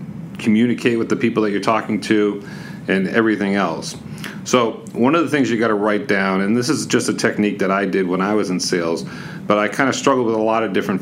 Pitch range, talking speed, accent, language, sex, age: 100-120 Hz, 245 wpm, American, English, male, 40-59